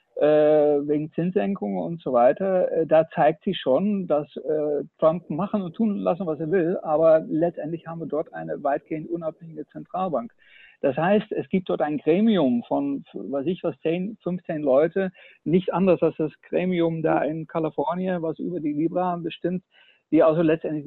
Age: 60-79